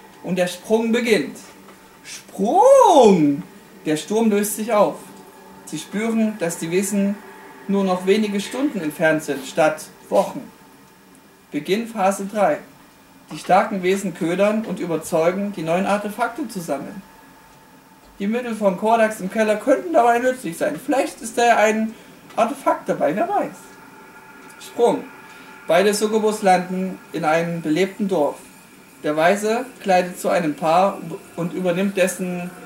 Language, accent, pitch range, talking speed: German, German, 180-220 Hz, 130 wpm